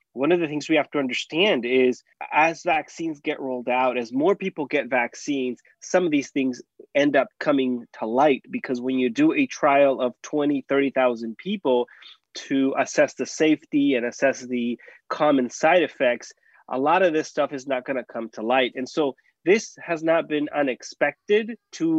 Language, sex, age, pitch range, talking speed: English, male, 20-39, 130-160 Hz, 185 wpm